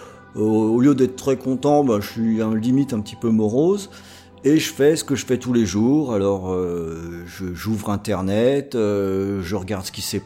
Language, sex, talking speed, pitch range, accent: French, male, 205 wpm, 105-135 Hz, French